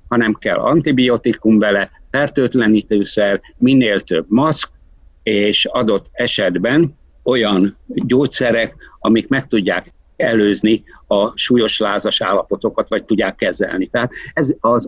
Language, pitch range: Hungarian, 105-125 Hz